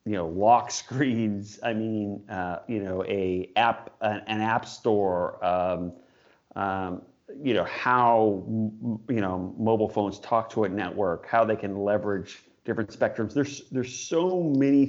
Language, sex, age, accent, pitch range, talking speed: English, male, 30-49, American, 100-120 Hz, 155 wpm